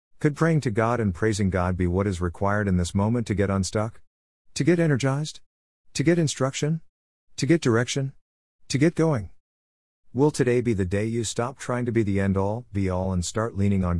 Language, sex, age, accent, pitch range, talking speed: English, male, 50-69, American, 85-115 Hz, 205 wpm